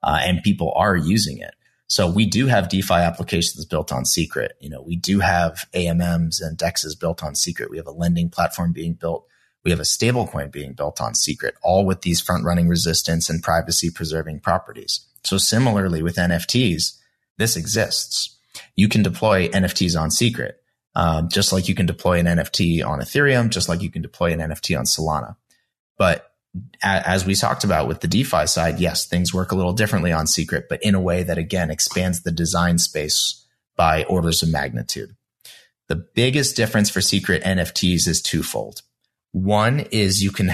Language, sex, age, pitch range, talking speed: English, male, 30-49, 85-95 Hz, 185 wpm